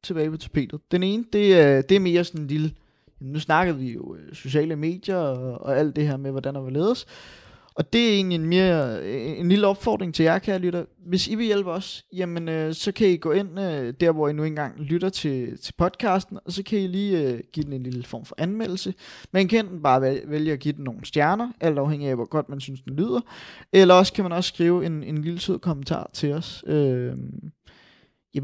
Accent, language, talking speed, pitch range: native, Danish, 235 wpm, 145-185 Hz